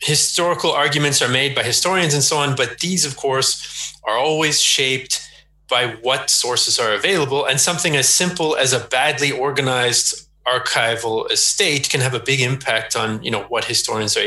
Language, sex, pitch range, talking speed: English, male, 130-155 Hz, 175 wpm